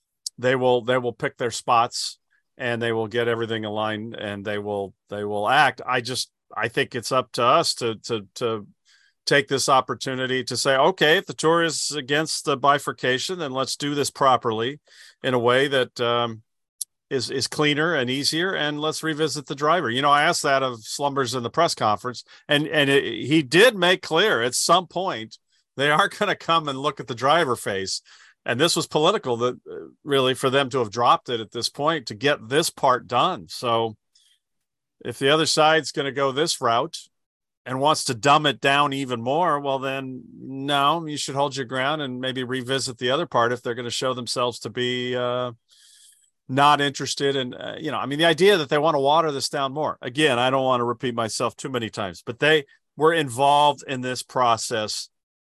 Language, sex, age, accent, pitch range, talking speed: English, male, 40-59, American, 120-150 Hz, 210 wpm